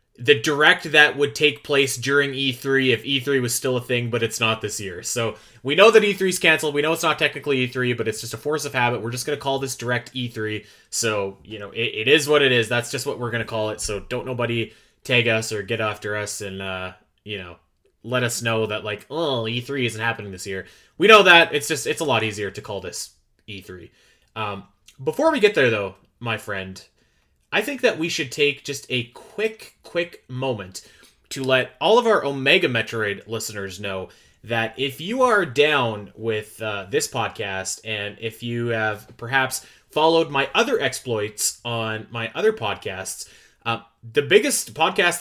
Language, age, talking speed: English, 20-39, 205 wpm